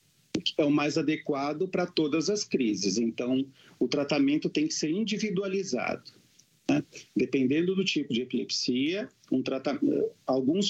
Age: 50-69